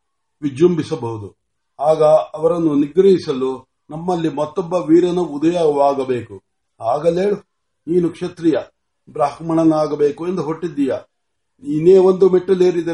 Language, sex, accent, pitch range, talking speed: Marathi, male, native, 140-165 Hz, 50 wpm